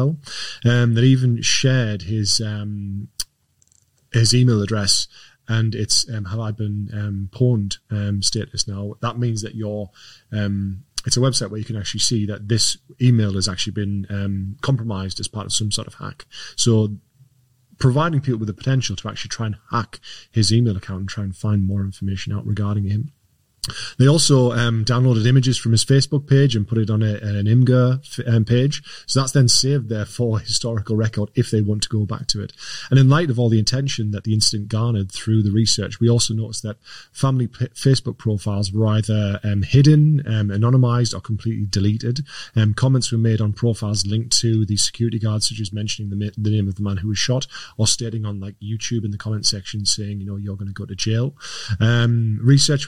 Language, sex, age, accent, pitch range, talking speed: English, male, 20-39, British, 105-120 Hz, 205 wpm